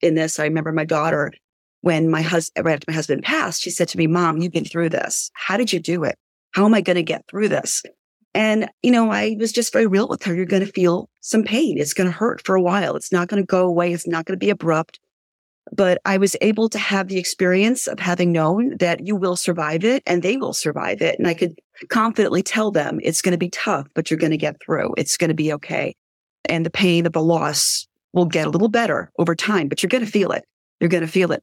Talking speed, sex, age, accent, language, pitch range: 245 wpm, female, 40-59, American, English, 160-200 Hz